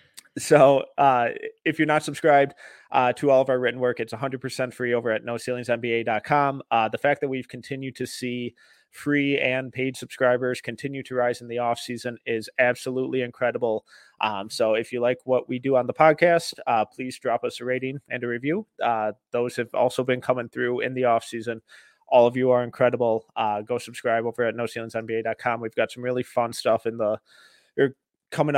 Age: 30-49